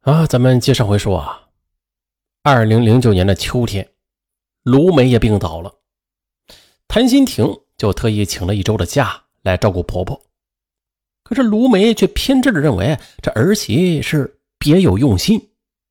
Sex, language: male, Chinese